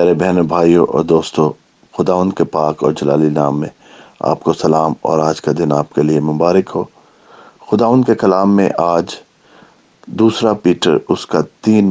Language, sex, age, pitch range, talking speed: English, male, 50-69, 85-100 Hz, 150 wpm